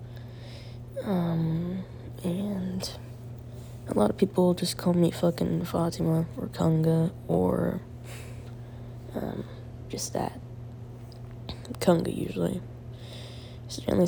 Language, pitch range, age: English, 120-160 Hz, 20-39